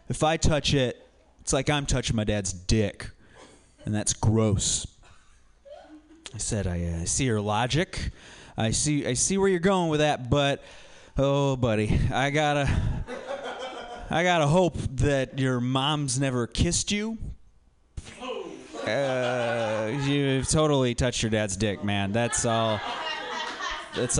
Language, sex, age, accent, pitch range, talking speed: English, male, 30-49, American, 115-165 Hz, 140 wpm